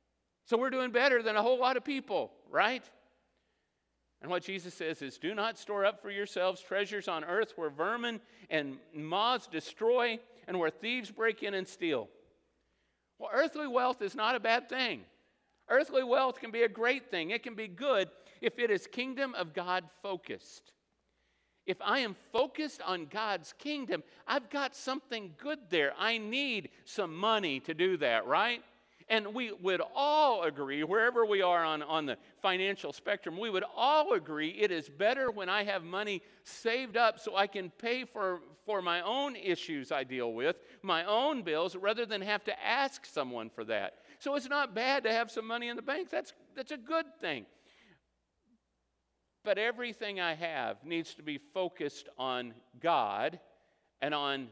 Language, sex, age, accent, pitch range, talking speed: English, male, 50-69, American, 180-250 Hz, 175 wpm